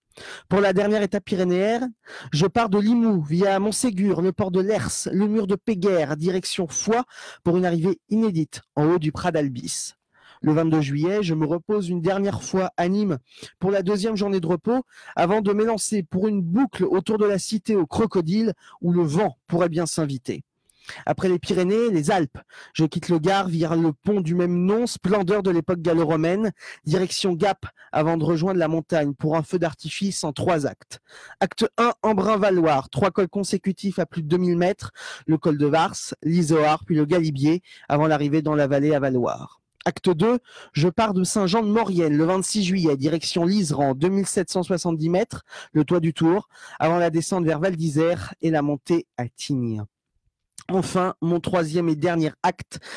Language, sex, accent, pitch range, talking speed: French, male, French, 160-195 Hz, 180 wpm